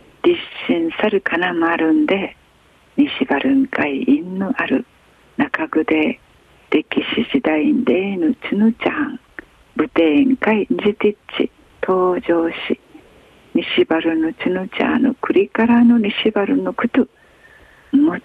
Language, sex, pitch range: Japanese, female, 195-290 Hz